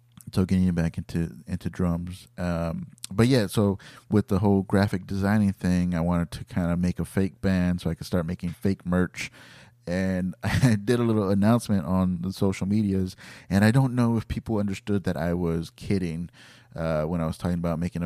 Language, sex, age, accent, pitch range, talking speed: English, male, 30-49, American, 90-105 Hz, 200 wpm